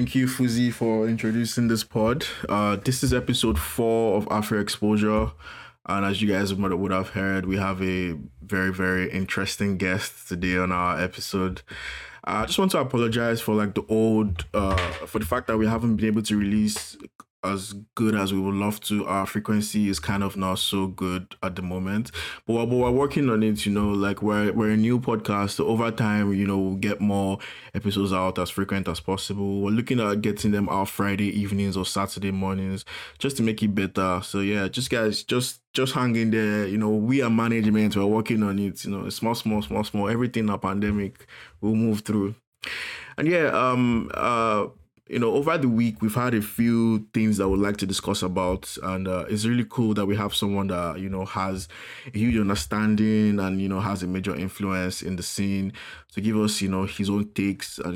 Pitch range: 95-110 Hz